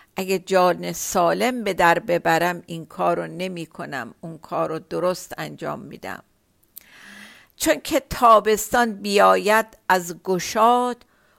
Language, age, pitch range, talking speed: Persian, 50-69, 175-225 Hz, 100 wpm